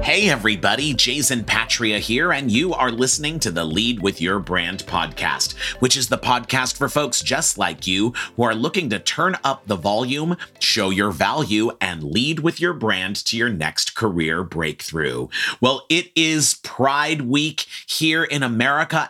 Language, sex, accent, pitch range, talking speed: English, male, American, 105-145 Hz, 170 wpm